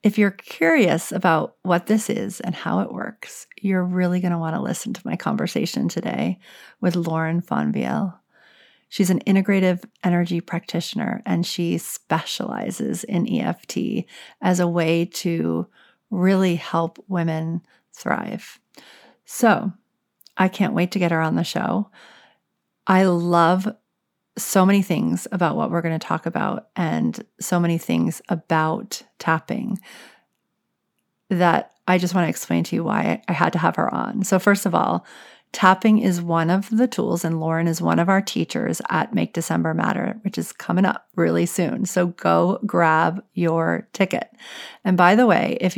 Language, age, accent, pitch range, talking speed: English, 40-59, American, 170-210 Hz, 160 wpm